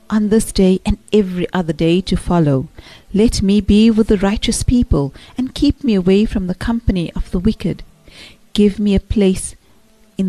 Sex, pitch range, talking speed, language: female, 175-220 Hz, 180 wpm, English